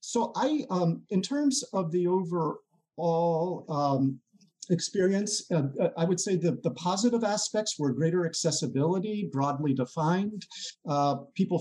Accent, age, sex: American, 50-69, male